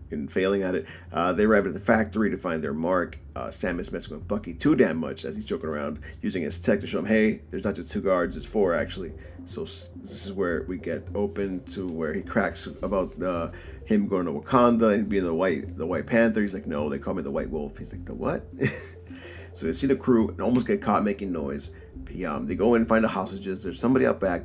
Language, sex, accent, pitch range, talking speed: English, male, American, 85-115 Hz, 255 wpm